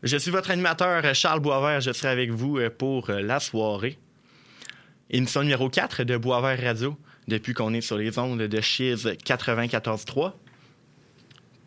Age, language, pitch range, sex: 20-39, French, 115-140 Hz, male